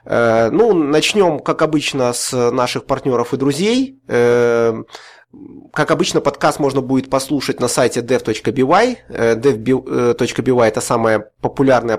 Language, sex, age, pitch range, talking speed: English, male, 20-39, 120-145 Hz, 110 wpm